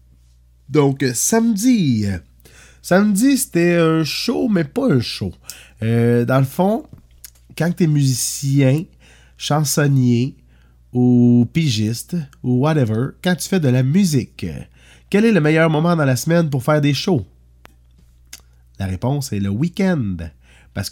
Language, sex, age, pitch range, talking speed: French, male, 30-49, 105-155 Hz, 135 wpm